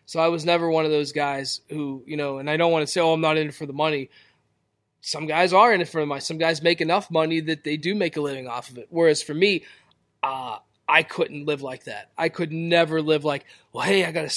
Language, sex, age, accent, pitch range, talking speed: English, male, 20-39, American, 145-170 Hz, 275 wpm